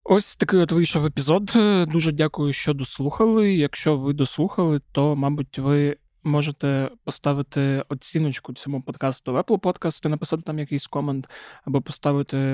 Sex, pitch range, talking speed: male, 140-155 Hz, 145 wpm